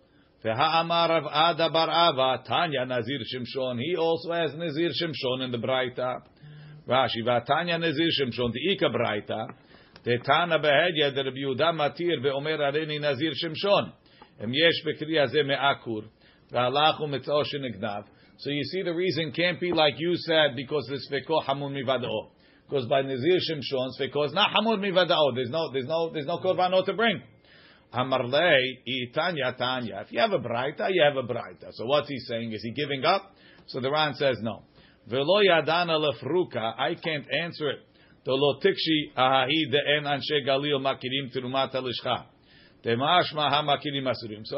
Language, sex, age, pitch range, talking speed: English, male, 50-69, 130-165 Hz, 80 wpm